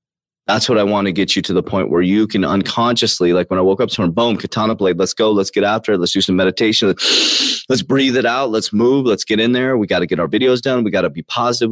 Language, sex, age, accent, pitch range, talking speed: English, male, 30-49, American, 90-125 Hz, 275 wpm